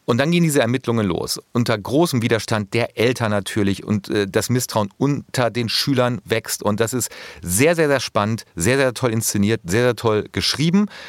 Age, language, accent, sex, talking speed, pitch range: 40-59, German, German, male, 190 wpm, 100-130 Hz